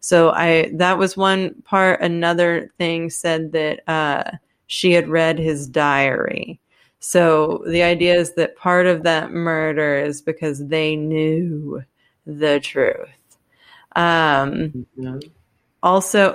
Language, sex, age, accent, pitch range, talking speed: English, female, 30-49, American, 160-180 Hz, 120 wpm